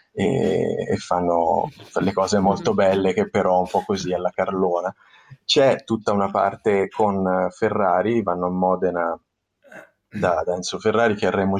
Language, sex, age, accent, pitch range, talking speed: Italian, male, 20-39, native, 95-115 Hz, 150 wpm